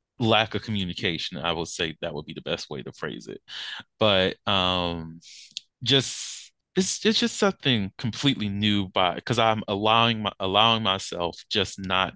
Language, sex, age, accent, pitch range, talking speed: English, male, 20-39, American, 90-115 Hz, 165 wpm